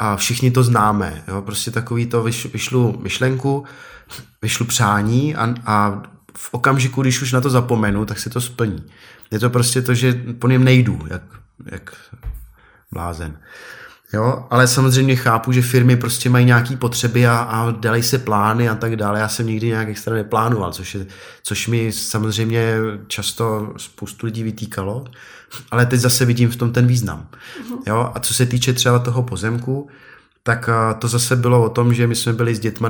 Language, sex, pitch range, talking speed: Slovak, male, 105-125 Hz, 175 wpm